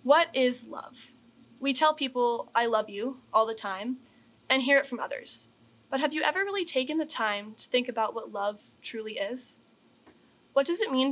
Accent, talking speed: American, 195 wpm